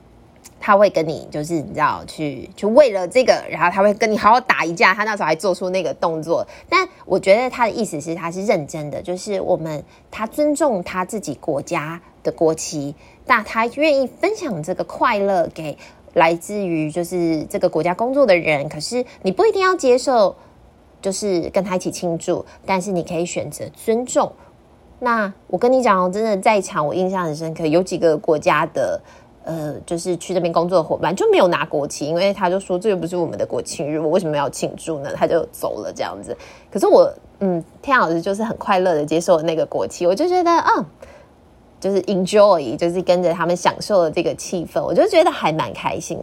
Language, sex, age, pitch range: Chinese, female, 20-39, 165-225 Hz